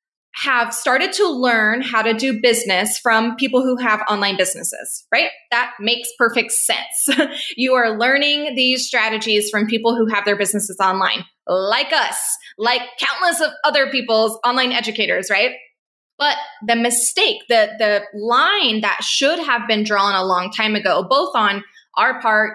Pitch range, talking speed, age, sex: 210-260 Hz, 160 wpm, 20-39, female